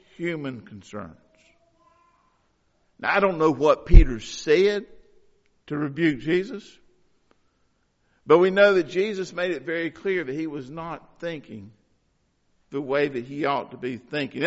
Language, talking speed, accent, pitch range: English, 140 wpm, American, 140-195 Hz